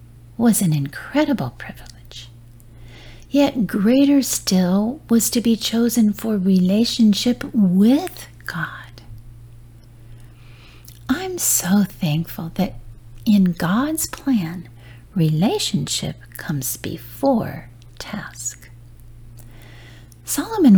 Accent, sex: American, female